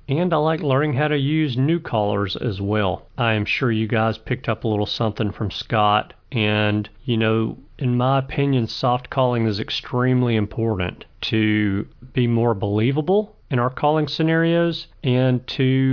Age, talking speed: 40-59, 165 wpm